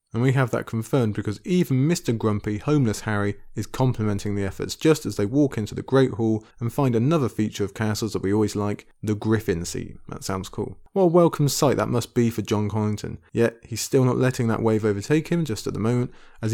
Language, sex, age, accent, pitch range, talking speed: English, male, 20-39, British, 105-135 Hz, 230 wpm